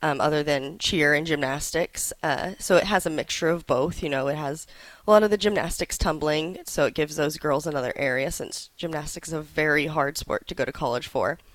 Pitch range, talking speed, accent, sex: 150-170 Hz, 225 wpm, American, female